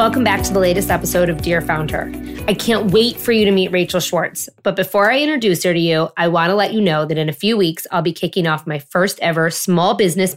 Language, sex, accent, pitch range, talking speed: English, female, American, 170-215 Hz, 260 wpm